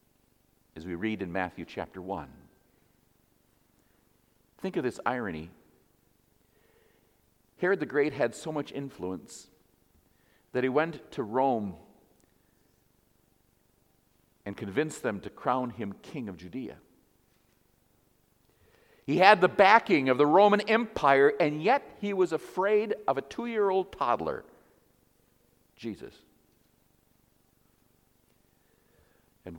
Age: 50-69